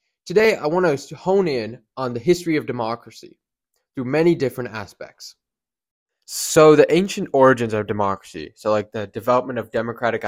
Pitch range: 105-130 Hz